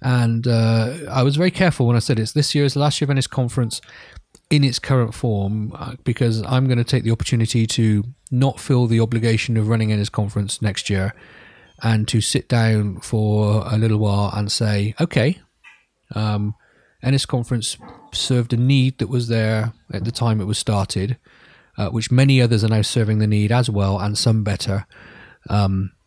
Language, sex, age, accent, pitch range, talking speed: English, male, 30-49, British, 105-125 Hz, 185 wpm